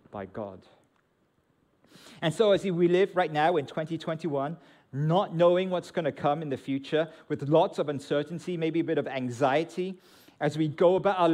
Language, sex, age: English, male, 40-59